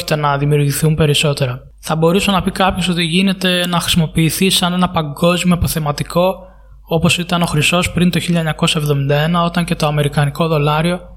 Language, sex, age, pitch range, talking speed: Greek, male, 20-39, 155-180 Hz, 150 wpm